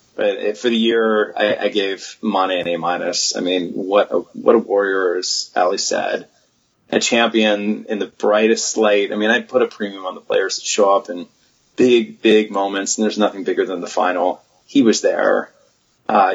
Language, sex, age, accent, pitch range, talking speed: English, male, 30-49, American, 100-115 Hz, 190 wpm